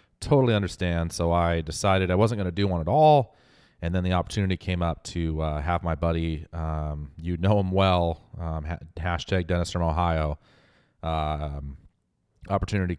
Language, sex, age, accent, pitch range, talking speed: English, male, 30-49, American, 80-100 Hz, 170 wpm